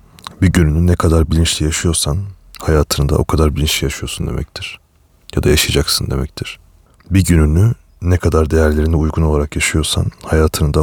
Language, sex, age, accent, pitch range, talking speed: Turkish, male, 30-49, native, 75-90 Hz, 140 wpm